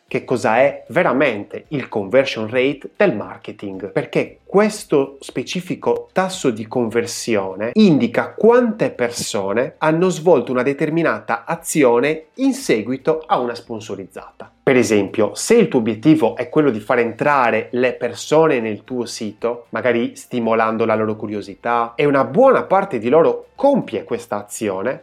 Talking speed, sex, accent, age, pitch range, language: 140 wpm, male, native, 30-49, 115-195 Hz, Italian